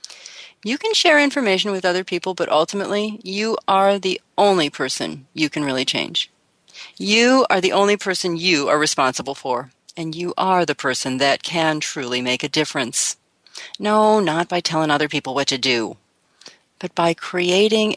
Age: 40-59